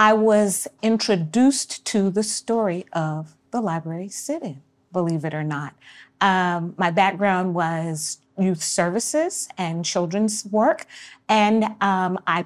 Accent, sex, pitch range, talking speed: American, female, 175-230 Hz, 125 wpm